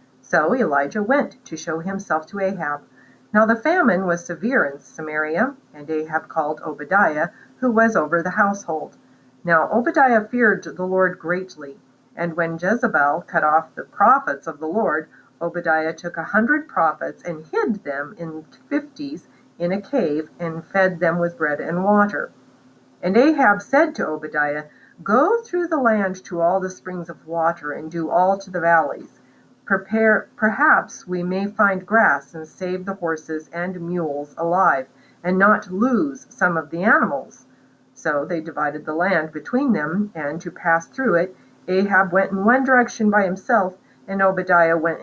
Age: 50-69